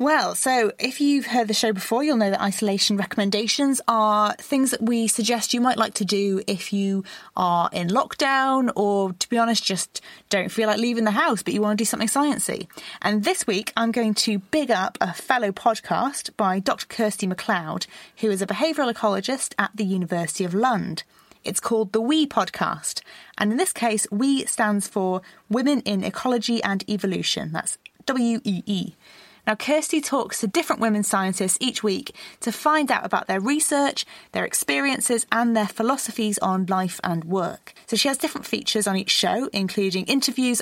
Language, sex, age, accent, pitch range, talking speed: English, female, 20-39, British, 195-245 Hz, 185 wpm